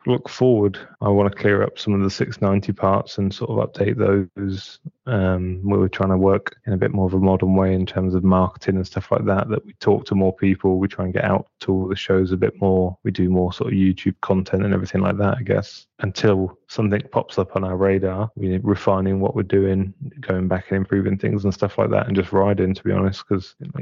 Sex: male